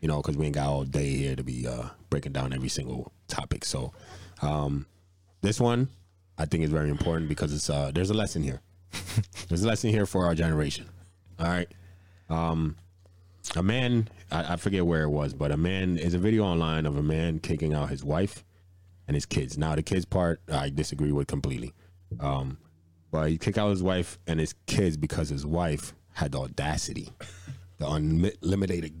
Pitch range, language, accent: 75-95 Hz, English, American